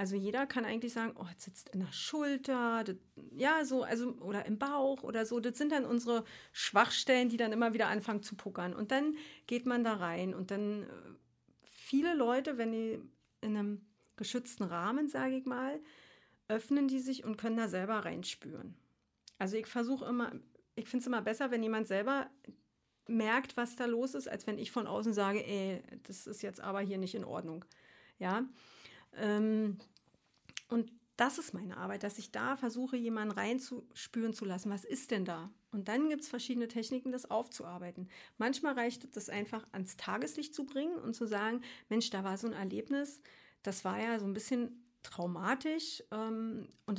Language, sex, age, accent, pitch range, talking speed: German, female, 40-59, German, 210-255 Hz, 185 wpm